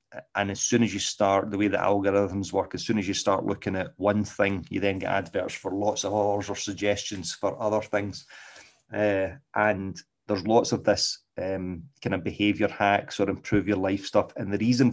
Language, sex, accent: English, male, British